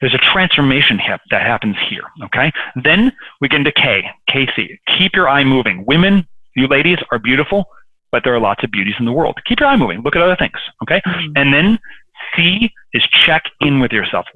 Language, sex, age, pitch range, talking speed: English, male, 30-49, 120-175 Hz, 205 wpm